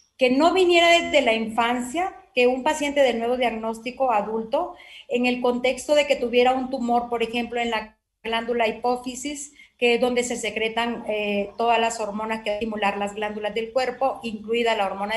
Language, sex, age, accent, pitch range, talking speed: Spanish, female, 40-59, Mexican, 230-265 Hz, 180 wpm